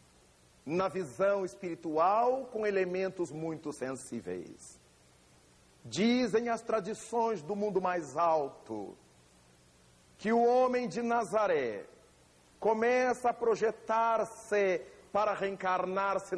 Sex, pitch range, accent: male, 160-230 Hz, Brazilian